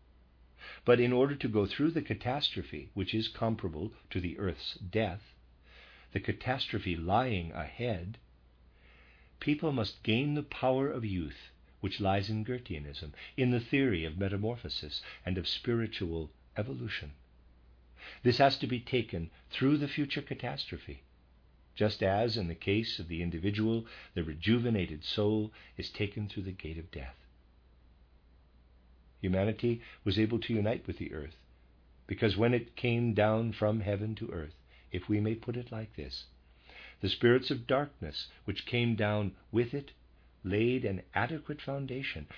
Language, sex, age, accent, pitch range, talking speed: English, male, 50-69, American, 75-115 Hz, 145 wpm